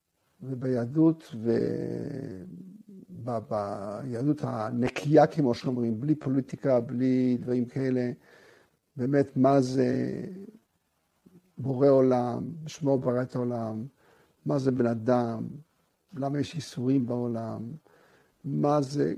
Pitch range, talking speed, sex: 125-150 Hz, 95 wpm, male